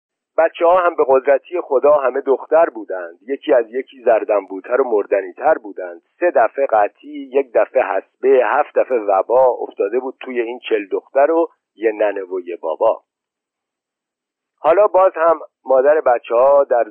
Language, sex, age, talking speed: Persian, male, 50-69, 160 wpm